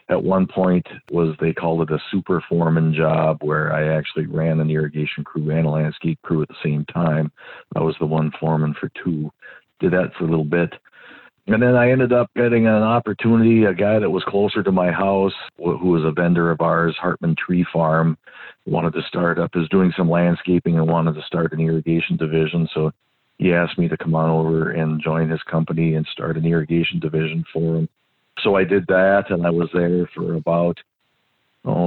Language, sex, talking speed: English, male, 205 wpm